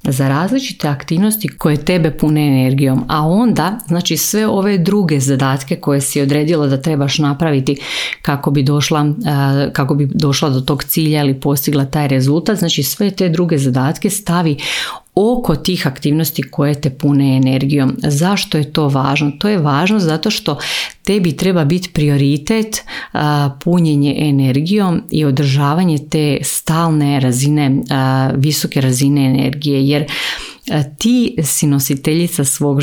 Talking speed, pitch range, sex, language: 135 wpm, 135-160 Hz, female, Croatian